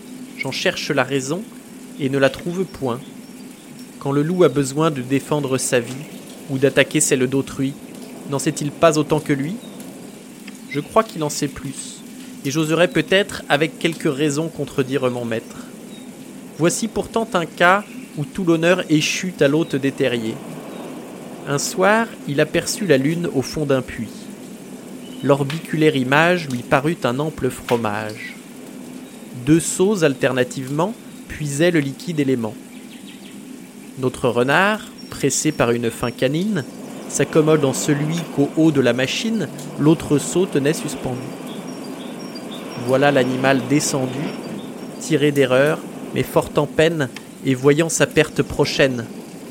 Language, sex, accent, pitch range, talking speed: French, male, French, 140-220 Hz, 145 wpm